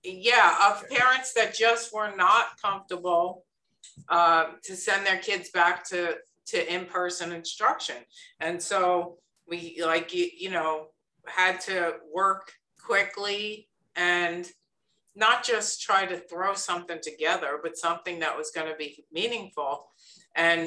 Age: 50-69